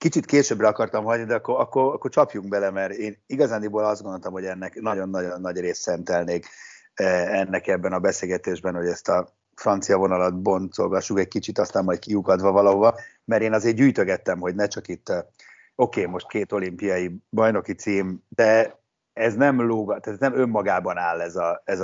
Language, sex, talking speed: Hungarian, male, 175 wpm